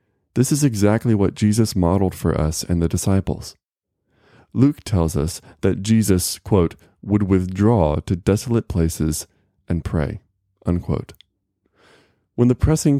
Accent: American